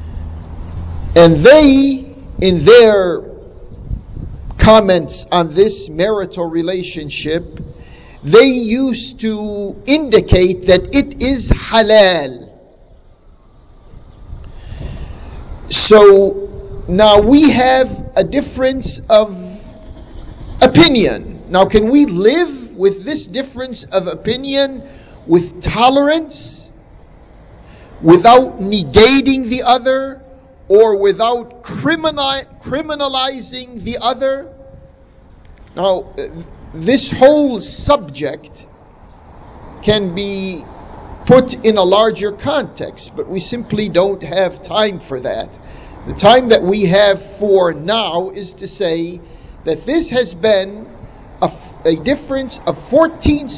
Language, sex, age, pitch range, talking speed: English, male, 50-69, 185-265 Hz, 95 wpm